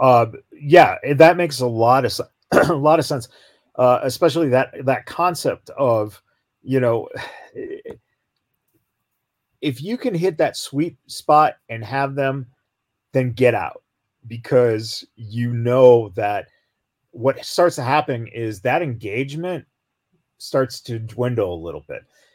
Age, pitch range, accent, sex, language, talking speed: 40-59, 125-165 Hz, American, male, English, 135 wpm